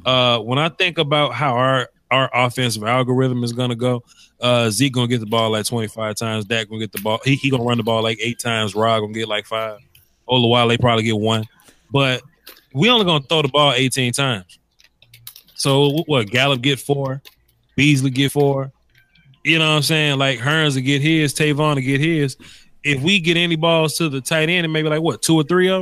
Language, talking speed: English, 240 wpm